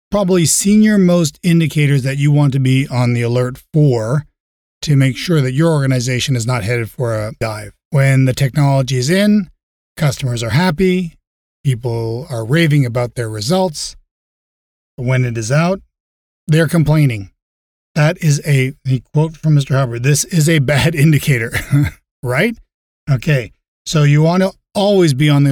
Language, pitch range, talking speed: English, 125-165 Hz, 160 wpm